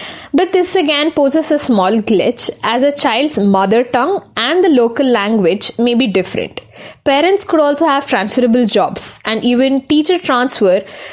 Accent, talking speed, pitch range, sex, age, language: native, 155 wpm, 225-300 Hz, female, 20-39, Kannada